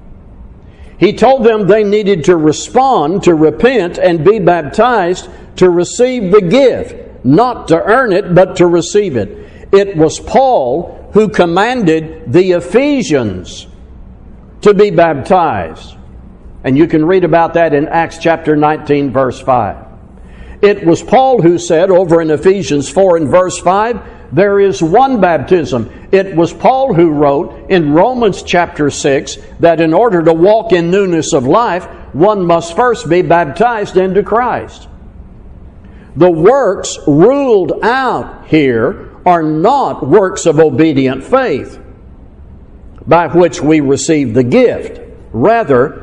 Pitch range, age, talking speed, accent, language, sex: 145-195 Hz, 60-79, 135 wpm, American, English, male